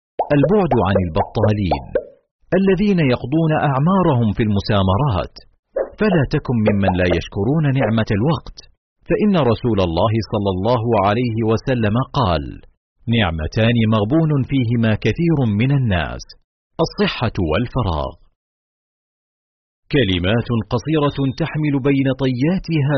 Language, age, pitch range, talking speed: Arabic, 40-59, 105-150 Hz, 95 wpm